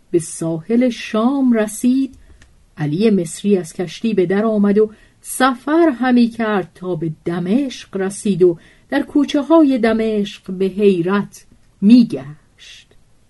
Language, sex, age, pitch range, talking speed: Persian, female, 50-69, 170-235 Hz, 120 wpm